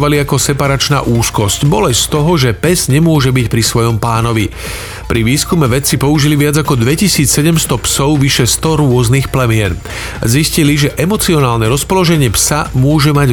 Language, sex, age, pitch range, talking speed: Slovak, male, 40-59, 120-150 Hz, 145 wpm